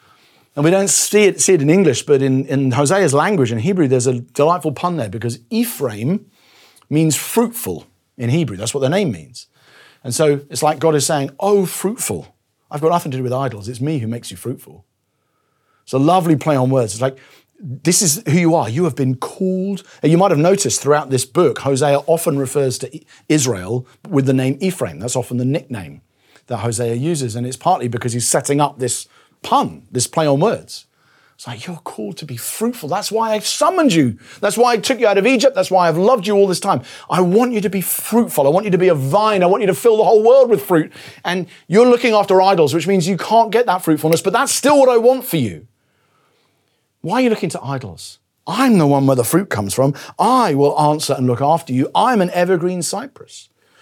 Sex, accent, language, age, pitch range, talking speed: male, British, English, 40-59, 130-195 Hz, 225 wpm